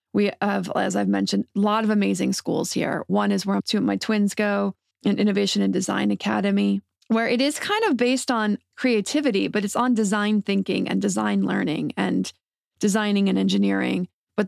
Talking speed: 185 wpm